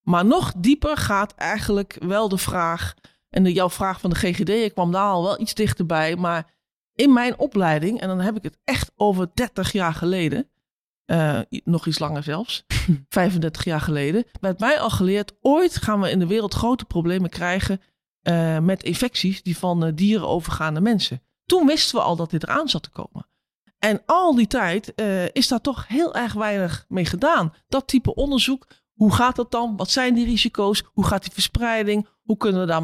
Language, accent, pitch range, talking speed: Dutch, Dutch, 175-235 Hz, 200 wpm